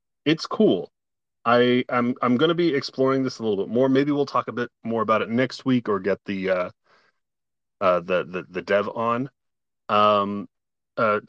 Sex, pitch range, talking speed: male, 105-135 Hz, 190 wpm